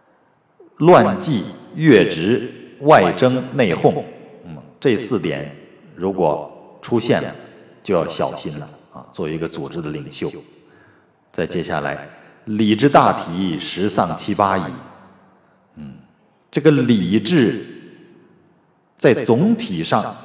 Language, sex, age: Chinese, male, 50-69